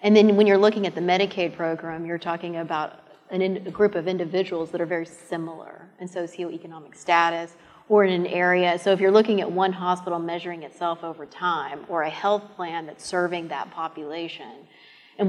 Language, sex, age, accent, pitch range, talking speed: English, female, 30-49, American, 165-190 Hz, 185 wpm